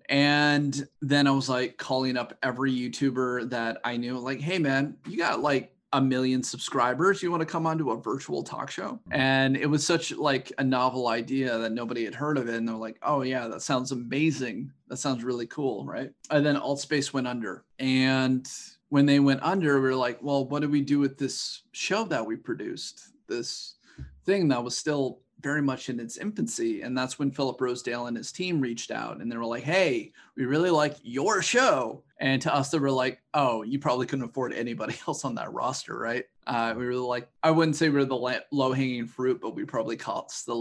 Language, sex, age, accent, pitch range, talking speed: English, male, 30-49, American, 125-145 Hz, 215 wpm